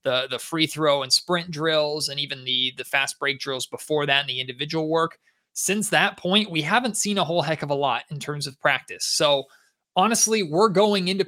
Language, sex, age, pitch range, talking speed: English, male, 20-39, 140-175 Hz, 215 wpm